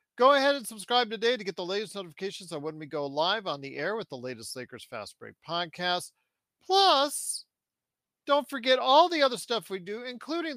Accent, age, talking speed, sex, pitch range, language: American, 40-59, 200 wpm, male, 175-255 Hz, English